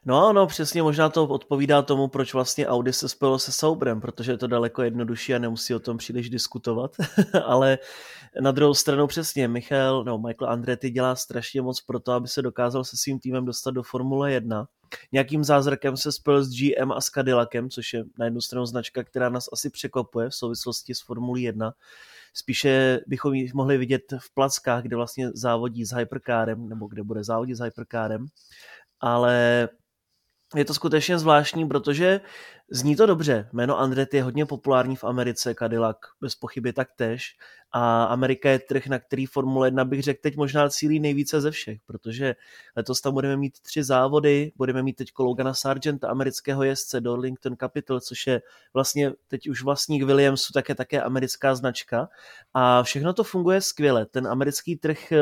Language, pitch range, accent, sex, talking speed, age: Czech, 120-140 Hz, native, male, 180 wpm, 20-39